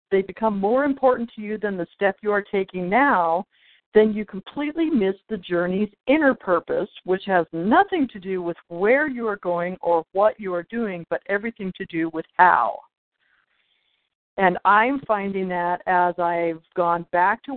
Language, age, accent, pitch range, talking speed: English, 50-69, American, 175-210 Hz, 175 wpm